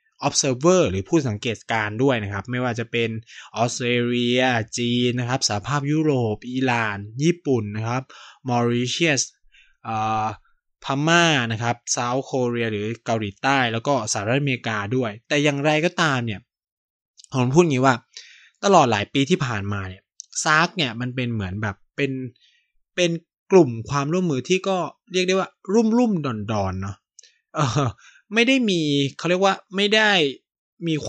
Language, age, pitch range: Thai, 20-39, 115-170 Hz